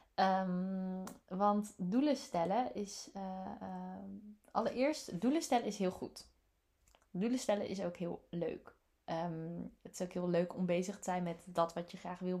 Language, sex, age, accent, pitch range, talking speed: Dutch, female, 20-39, Dutch, 175-210 Hz, 160 wpm